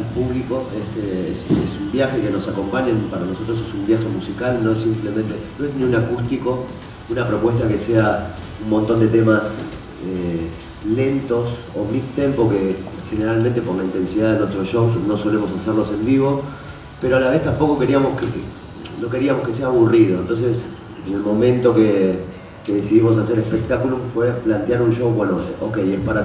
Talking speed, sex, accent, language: 180 wpm, male, Argentinian, Spanish